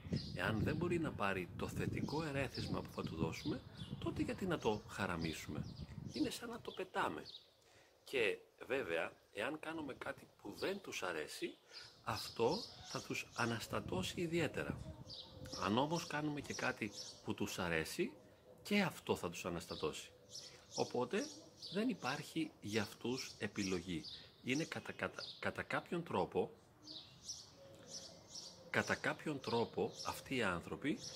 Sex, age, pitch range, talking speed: male, 40-59, 100-165 Hz, 130 wpm